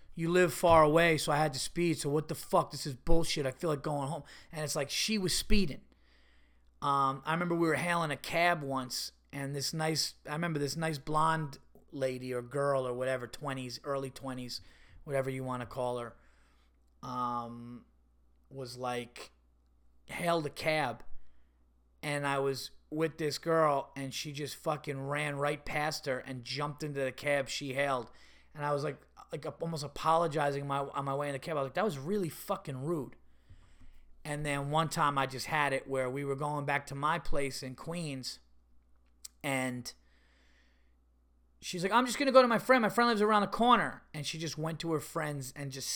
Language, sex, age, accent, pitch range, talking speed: English, male, 30-49, American, 120-155 Hz, 195 wpm